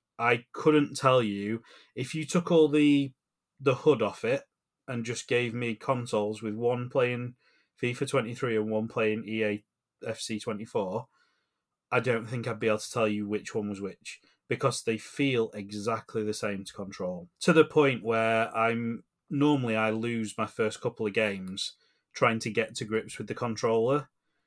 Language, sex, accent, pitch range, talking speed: English, male, British, 105-135 Hz, 175 wpm